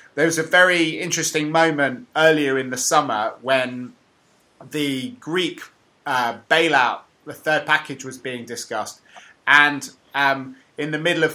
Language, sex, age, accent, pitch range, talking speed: English, male, 20-39, British, 125-150 Hz, 145 wpm